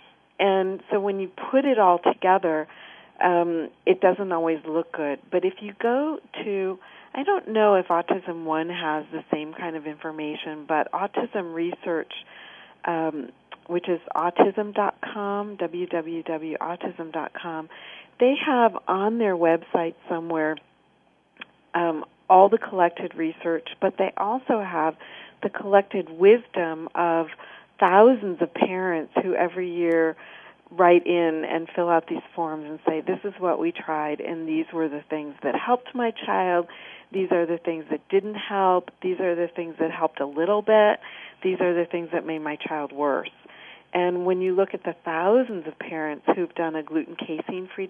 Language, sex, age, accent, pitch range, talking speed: English, female, 40-59, American, 160-190 Hz, 160 wpm